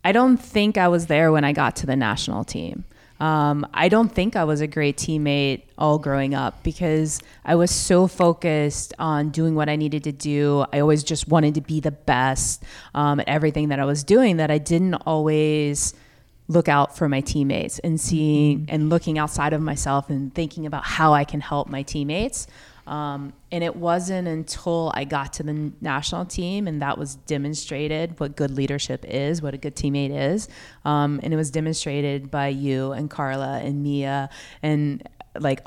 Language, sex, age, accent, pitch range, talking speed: English, female, 20-39, American, 140-165 Hz, 190 wpm